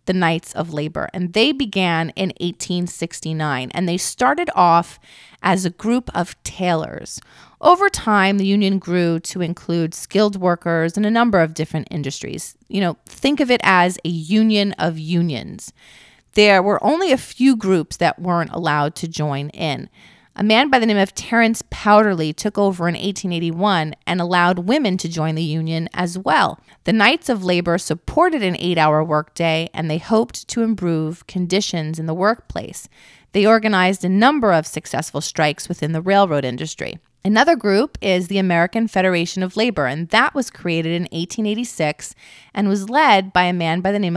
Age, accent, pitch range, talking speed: 30-49, American, 165-205 Hz, 175 wpm